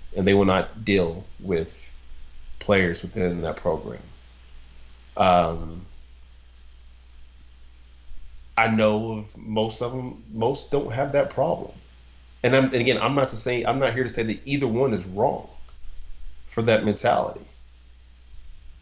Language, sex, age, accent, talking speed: English, male, 30-49, American, 135 wpm